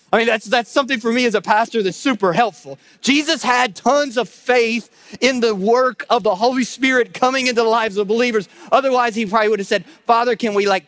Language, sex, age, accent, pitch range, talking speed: English, male, 40-59, American, 180-230 Hz, 225 wpm